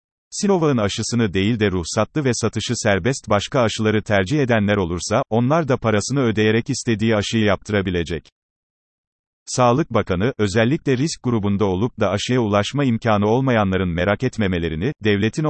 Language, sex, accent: Turkish, male, native